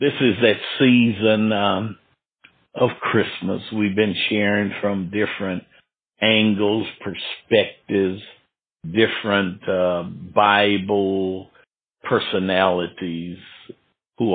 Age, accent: 60-79, American